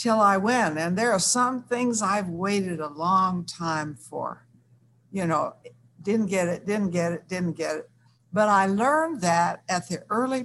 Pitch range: 160-210 Hz